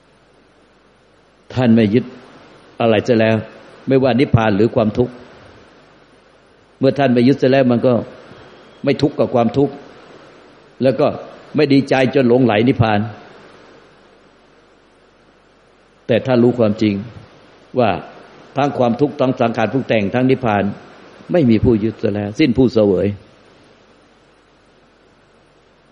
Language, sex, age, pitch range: Thai, male, 60-79, 115-135 Hz